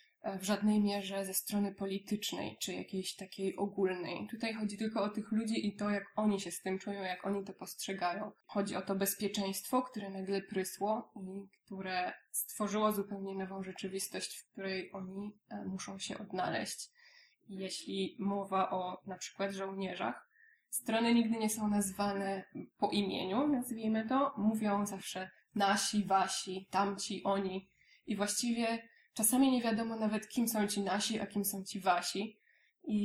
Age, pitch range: 20-39, 190-210 Hz